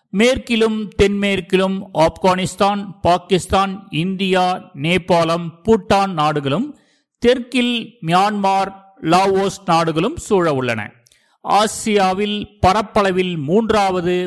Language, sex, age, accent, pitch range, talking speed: Tamil, male, 50-69, native, 165-215 Hz, 70 wpm